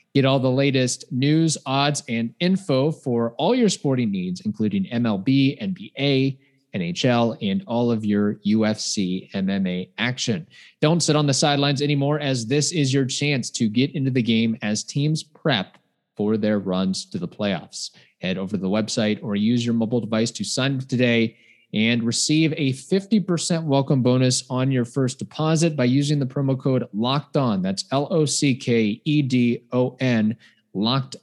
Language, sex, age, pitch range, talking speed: English, male, 30-49, 115-150 Hz, 175 wpm